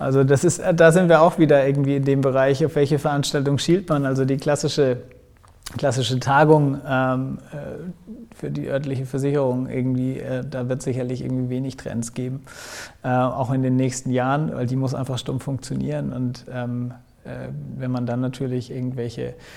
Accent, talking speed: German, 170 wpm